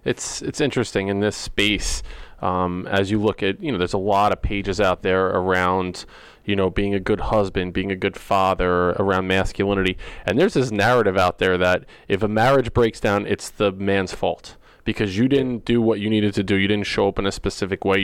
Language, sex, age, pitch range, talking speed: English, male, 20-39, 100-115 Hz, 220 wpm